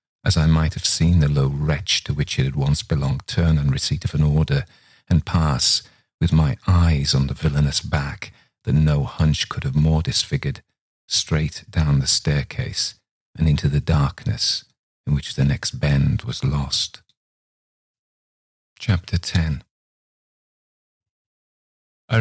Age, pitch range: 40-59, 75-95 Hz